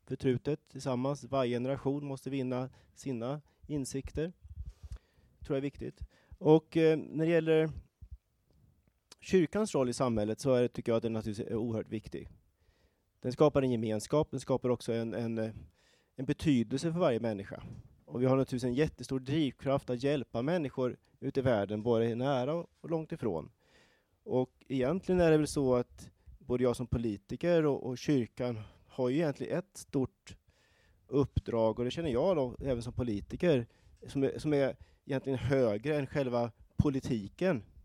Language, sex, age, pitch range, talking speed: Swedish, male, 30-49, 115-145 Hz, 160 wpm